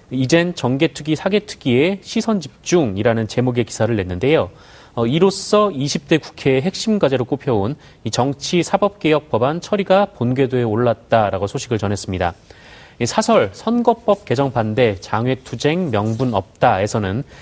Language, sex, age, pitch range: Korean, male, 30-49, 115-185 Hz